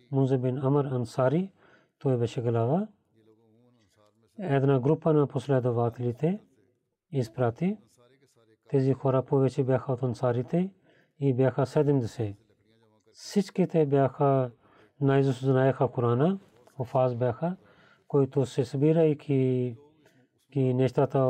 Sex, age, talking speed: male, 40-59, 100 wpm